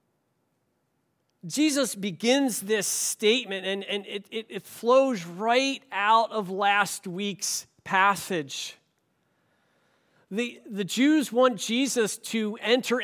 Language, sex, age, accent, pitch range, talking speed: English, male, 40-59, American, 185-240 Hz, 105 wpm